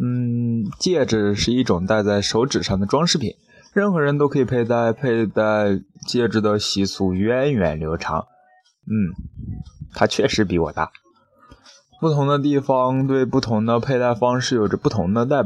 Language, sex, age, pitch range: Chinese, male, 20-39, 100-130 Hz